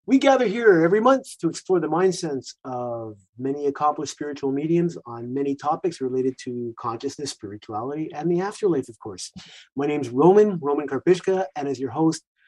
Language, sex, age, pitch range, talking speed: English, male, 30-49, 135-180 Hz, 175 wpm